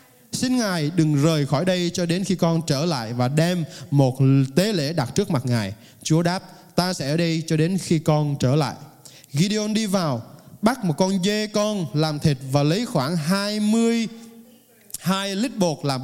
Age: 20-39